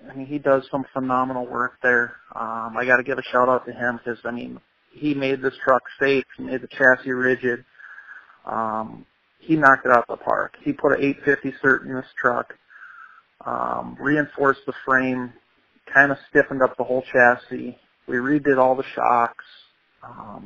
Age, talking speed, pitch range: 30-49, 185 wpm, 125-140 Hz